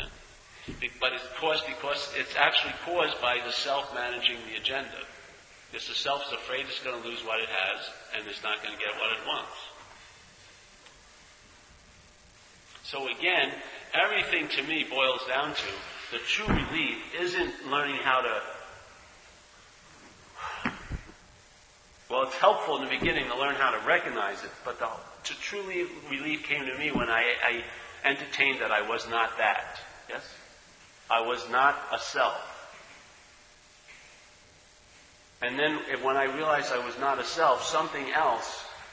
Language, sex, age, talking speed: English, male, 50-69, 150 wpm